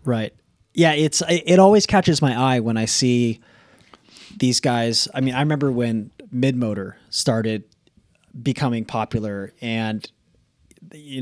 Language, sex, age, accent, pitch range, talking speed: English, male, 20-39, American, 110-130 Hz, 130 wpm